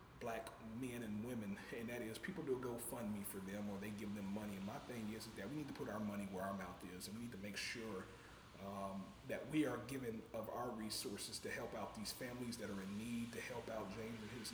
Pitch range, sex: 105-120 Hz, male